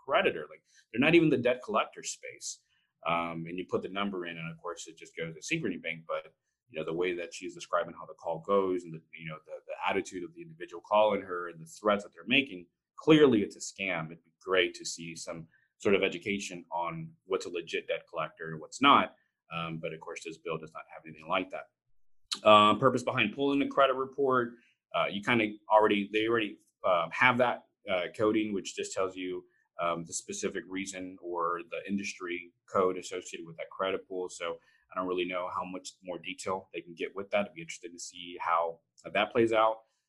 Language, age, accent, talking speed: English, 30-49, American, 220 wpm